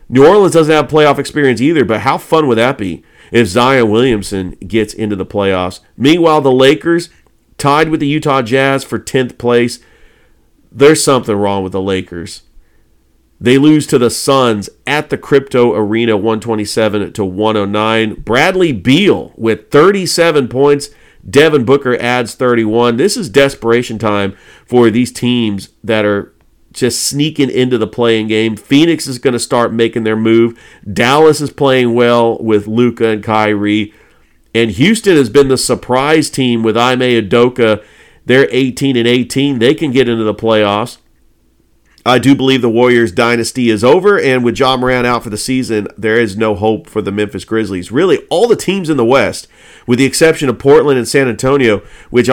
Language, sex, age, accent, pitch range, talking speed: English, male, 40-59, American, 110-135 Hz, 170 wpm